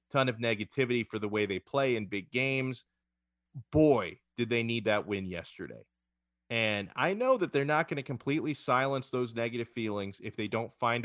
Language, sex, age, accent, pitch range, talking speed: English, male, 30-49, American, 100-125 Hz, 190 wpm